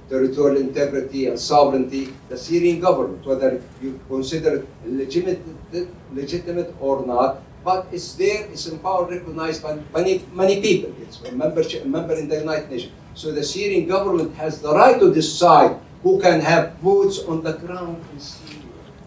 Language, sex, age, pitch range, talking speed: English, male, 60-79, 140-200 Hz, 160 wpm